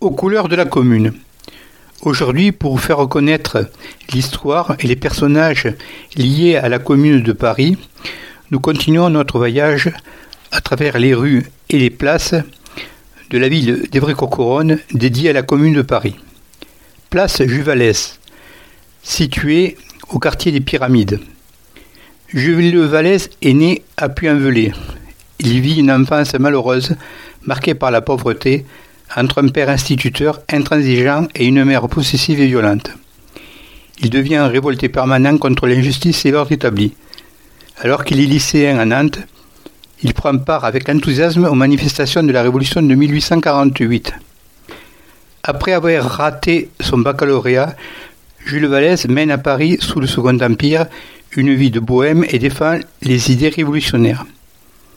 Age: 60-79